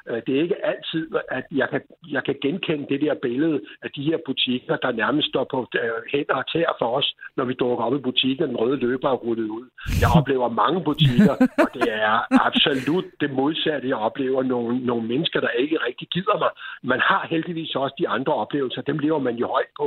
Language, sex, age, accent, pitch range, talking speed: Danish, male, 60-79, native, 120-160 Hz, 215 wpm